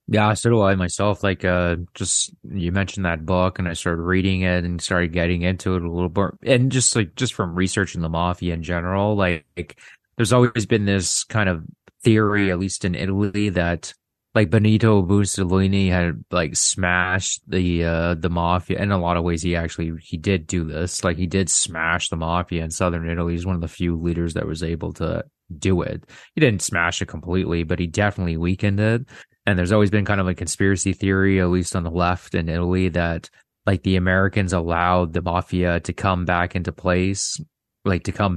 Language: English